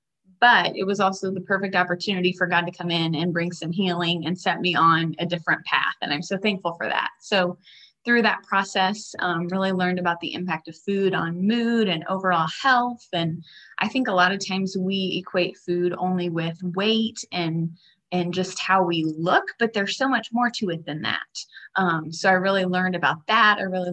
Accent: American